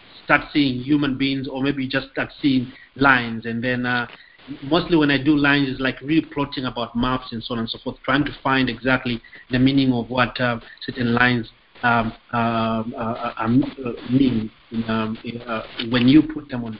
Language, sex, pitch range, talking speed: English, male, 125-145 Hz, 185 wpm